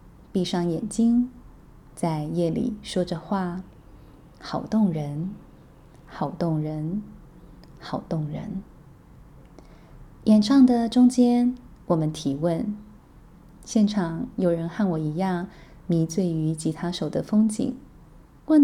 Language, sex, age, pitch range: Chinese, female, 20-39, 165-215 Hz